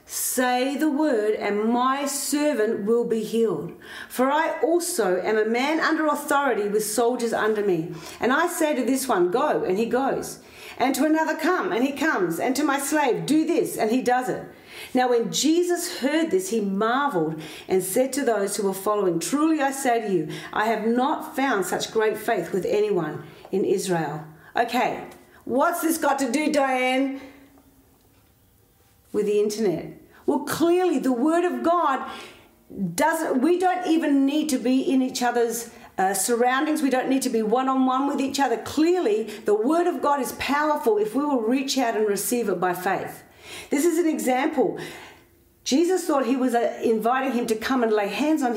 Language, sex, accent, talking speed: English, female, Australian, 190 wpm